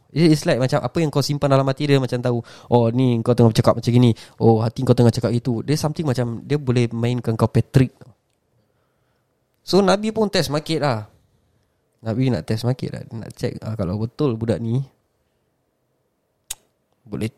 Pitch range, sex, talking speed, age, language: 115-145 Hz, male, 180 wpm, 20-39, Malay